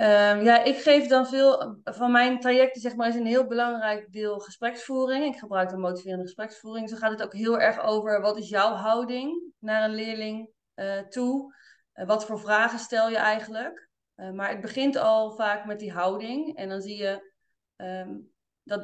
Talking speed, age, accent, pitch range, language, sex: 185 wpm, 20-39, Dutch, 200-245 Hz, Dutch, female